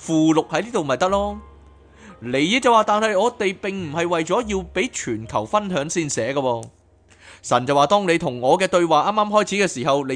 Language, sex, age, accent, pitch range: Chinese, male, 30-49, native, 120-180 Hz